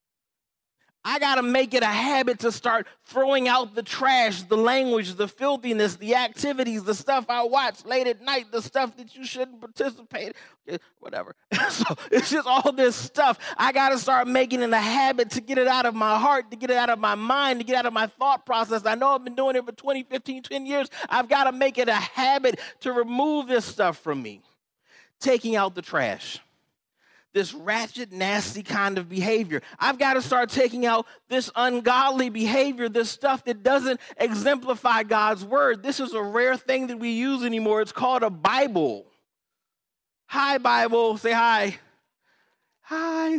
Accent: American